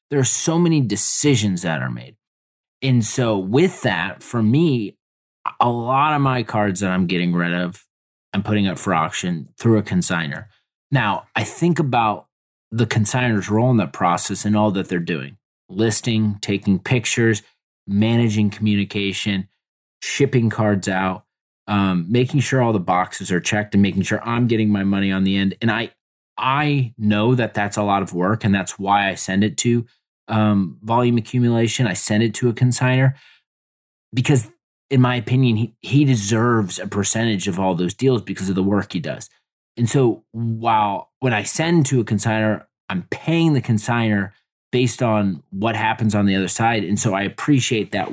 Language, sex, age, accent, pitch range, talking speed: English, male, 30-49, American, 100-125 Hz, 180 wpm